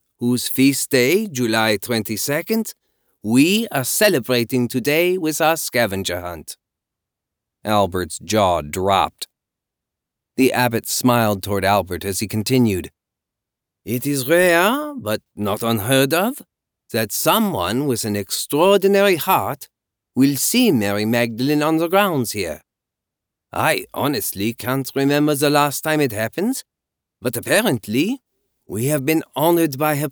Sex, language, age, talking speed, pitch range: male, English, 40-59, 125 wpm, 105-155 Hz